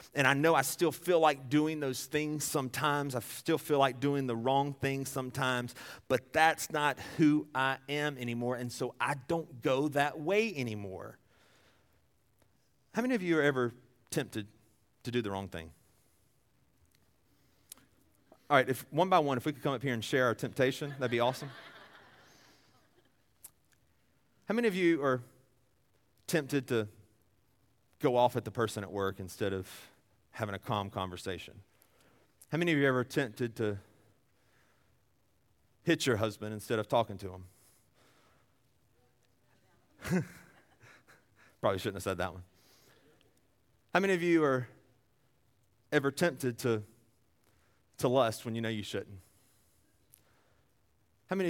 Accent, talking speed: American, 145 wpm